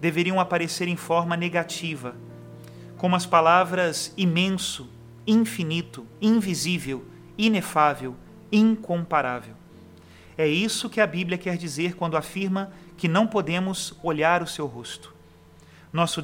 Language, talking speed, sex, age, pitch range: Portuguese, 110 wpm, male, 40-59, 145-185 Hz